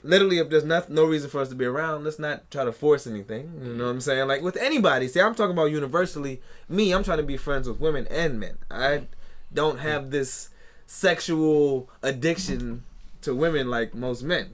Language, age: English, 20-39